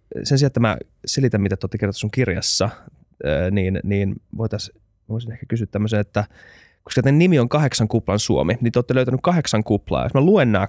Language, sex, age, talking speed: Finnish, male, 20-39, 195 wpm